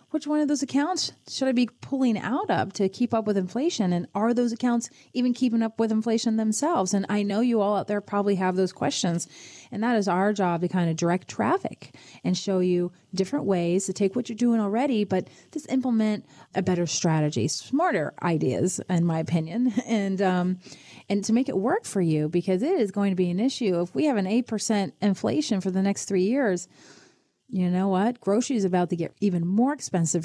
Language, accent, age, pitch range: English, American, 30-49, 180-235 Hz